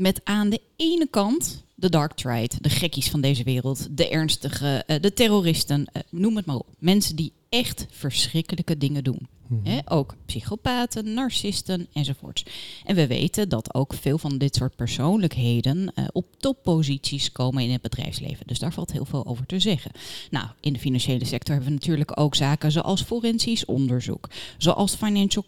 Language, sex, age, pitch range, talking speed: Dutch, female, 30-49, 135-195 Hz, 170 wpm